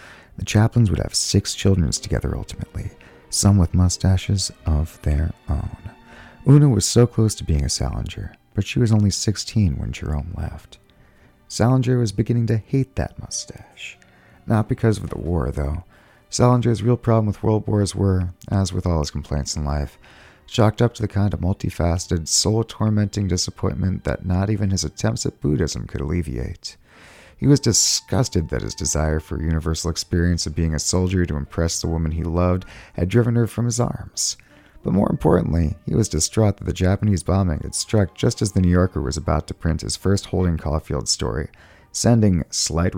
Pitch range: 80-105 Hz